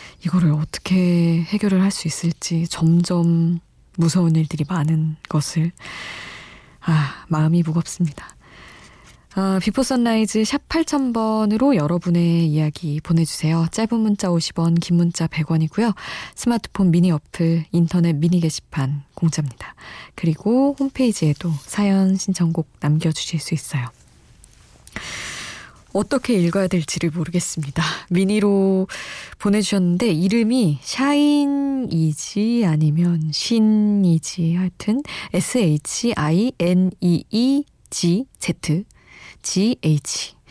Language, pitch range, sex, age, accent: Korean, 160-200 Hz, female, 20-39, native